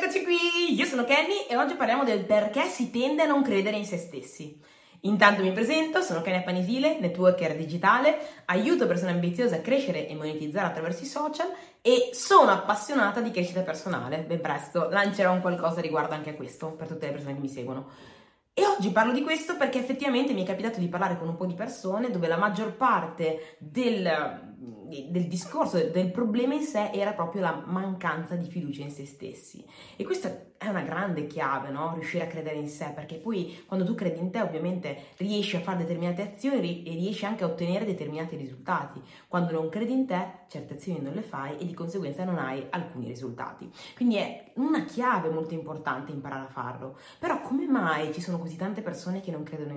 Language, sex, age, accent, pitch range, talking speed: Italian, female, 20-39, native, 160-225 Hz, 195 wpm